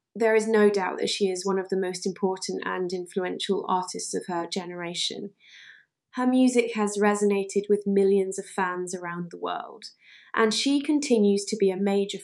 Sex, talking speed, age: female, 175 wpm, 20-39